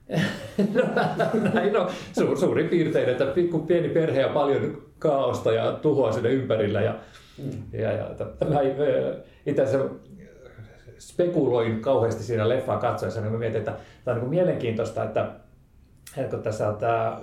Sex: male